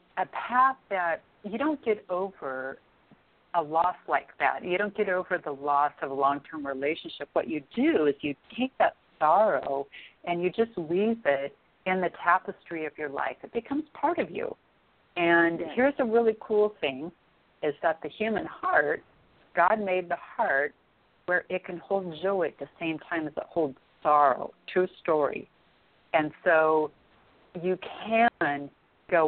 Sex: female